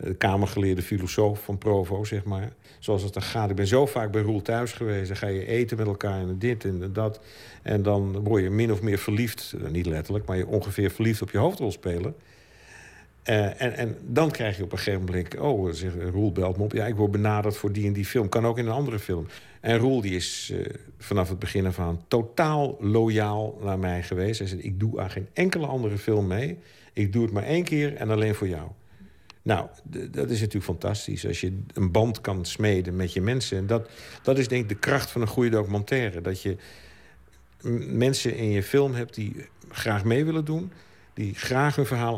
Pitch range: 100-120 Hz